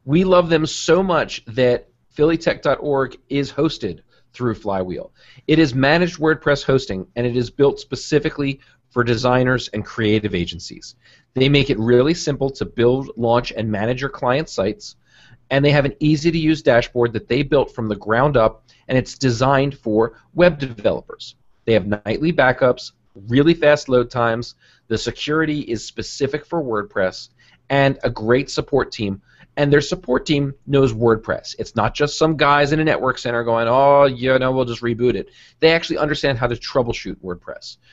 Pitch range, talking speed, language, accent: 115-145 Hz, 170 wpm, English, American